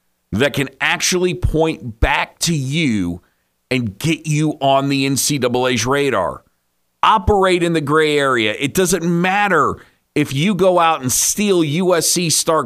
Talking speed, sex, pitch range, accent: 140 wpm, male, 125-180 Hz, American